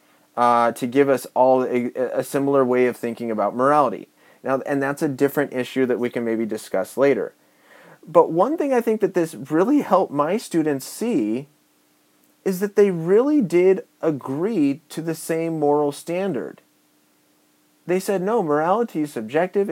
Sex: male